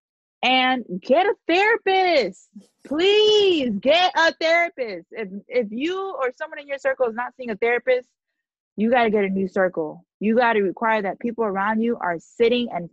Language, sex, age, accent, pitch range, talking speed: English, female, 20-39, American, 205-270 Hz, 170 wpm